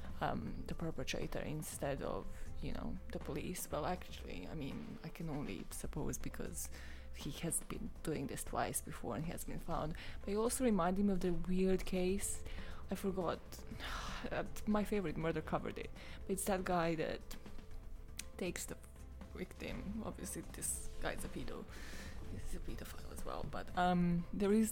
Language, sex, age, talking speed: English, female, 20-39, 165 wpm